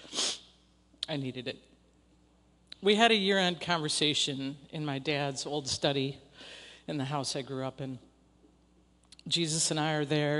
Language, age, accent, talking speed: English, 50-69, American, 145 wpm